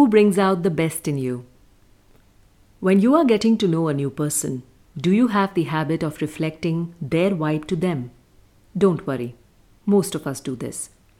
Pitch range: 135-195 Hz